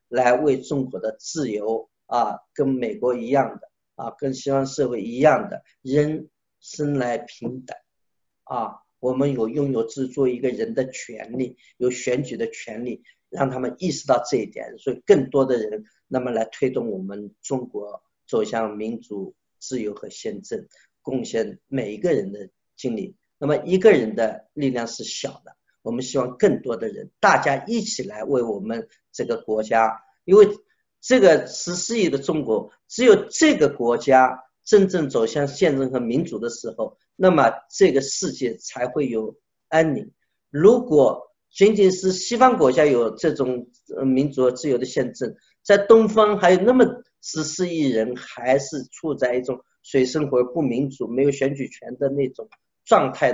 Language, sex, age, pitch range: Chinese, male, 50-69, 125-155 Hz